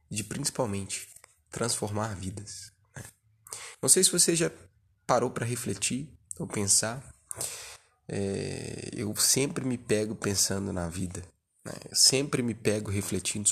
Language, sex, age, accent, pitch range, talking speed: Portuguese, male, 20-39, Brazilian, 100-125 Hz, 125 wpm